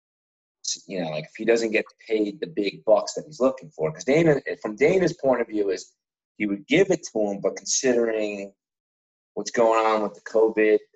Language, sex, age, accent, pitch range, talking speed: English, male, 30-49, American, 90-110 Hz, 205 wpm